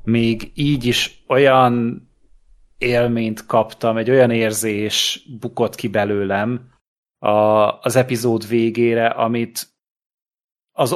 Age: 30-49